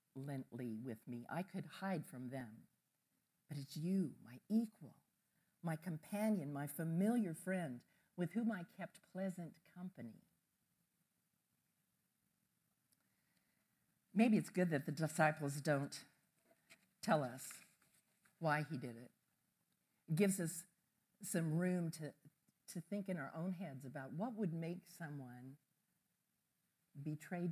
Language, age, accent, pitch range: English, 50-69, American, 155-195 Hz